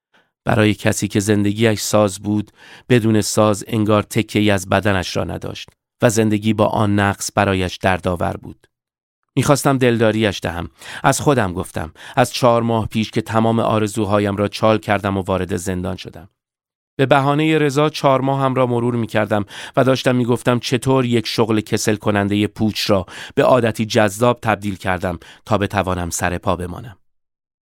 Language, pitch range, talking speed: Persian, 100-125 Hz, 155 wpm